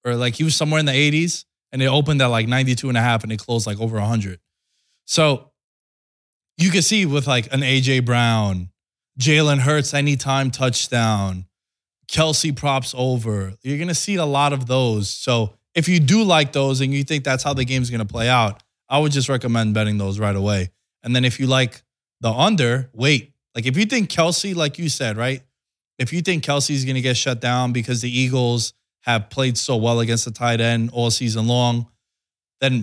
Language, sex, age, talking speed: English, male, 20-39, 205 wpm